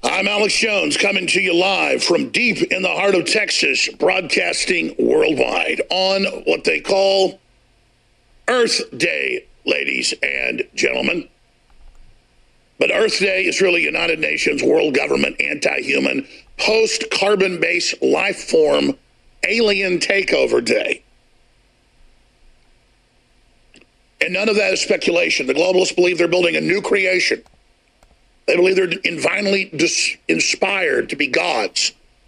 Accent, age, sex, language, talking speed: American, 50-69, male, English, 120 wpm